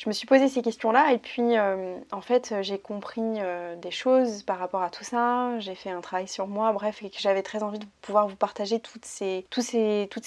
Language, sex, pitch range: French, female, 205-235 Hz